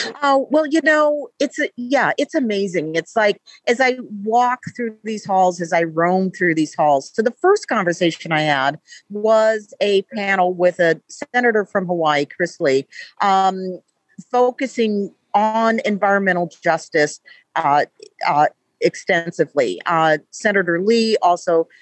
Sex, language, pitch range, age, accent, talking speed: female, English, 175-255 Hz, 50-69, American, 145 wpm